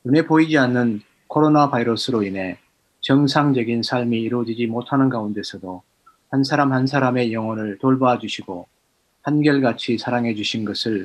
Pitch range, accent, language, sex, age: 110-140 Hz, native, Korean, male, 30-49